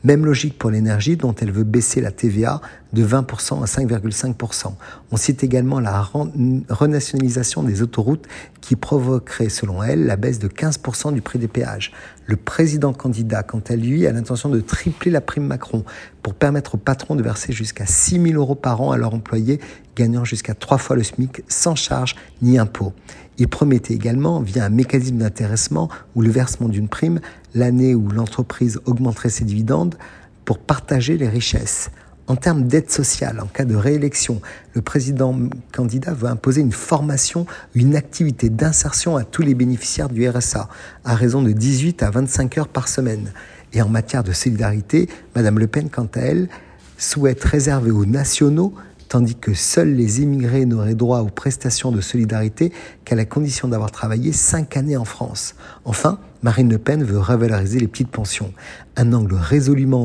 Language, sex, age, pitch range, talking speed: French, male, 50-69, 110-135 Hz, 175 wpm